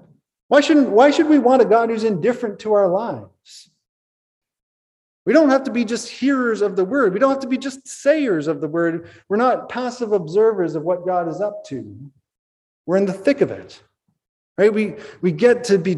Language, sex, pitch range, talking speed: English, male, 170-225 Hz, 205 wpm